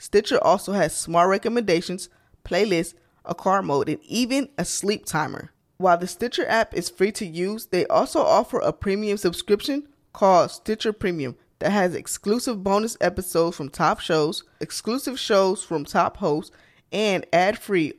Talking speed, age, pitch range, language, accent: 155 wpm, 20-39, 165-205 Hz, English, American